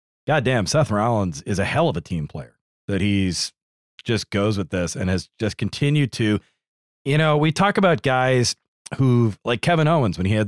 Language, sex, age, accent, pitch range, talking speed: English, male, 30-49, American, 105-145 Hz, 195 wpm